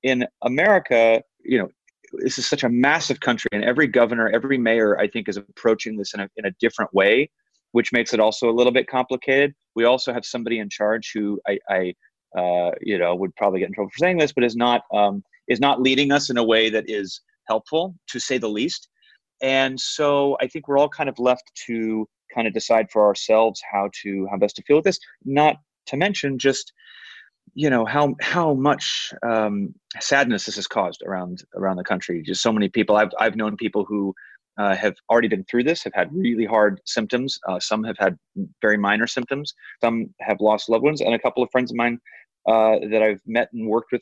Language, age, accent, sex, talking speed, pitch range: English, 30-49, American, male, 215 wpm, 110-135 Hz